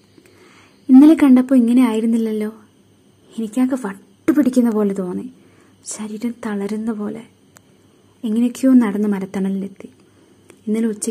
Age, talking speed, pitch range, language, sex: 20-39, 150 wpm, 205-260 Hz, English, female